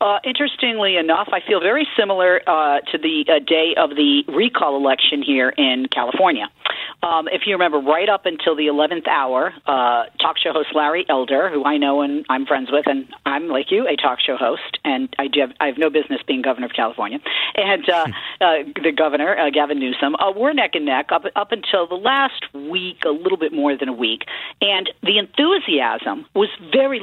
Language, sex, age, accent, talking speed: English, female, 50-69, American, 205 wpm